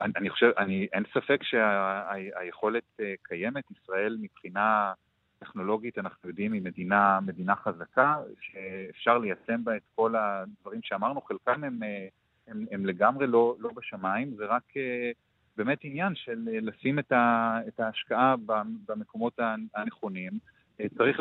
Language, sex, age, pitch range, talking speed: Hebrew, male, 30-49, 110-145 Hz, 120 wpm